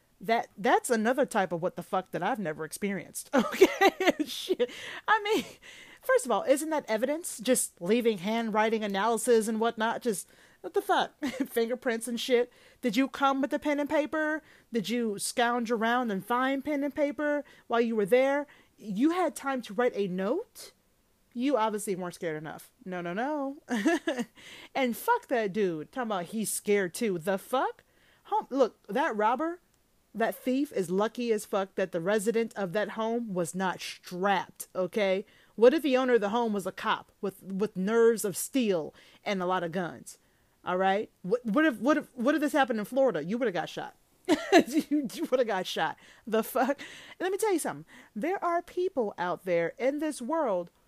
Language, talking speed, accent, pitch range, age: English, 190 wpm, American, 205-295 Hz, 30-49